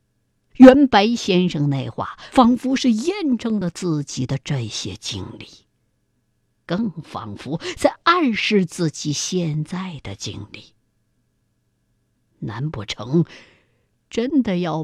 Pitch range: 155-245 Hz